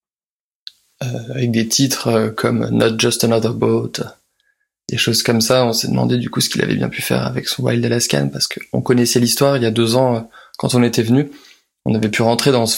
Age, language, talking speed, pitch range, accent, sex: 20-39, French, 215 wpm, 115-125 Hz, French, male